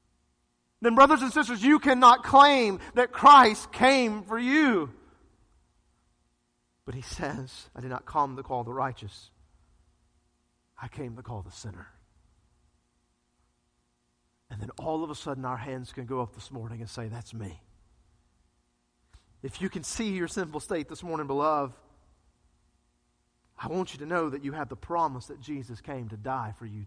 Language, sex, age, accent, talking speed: English, male, 40-59, American, 165 wpm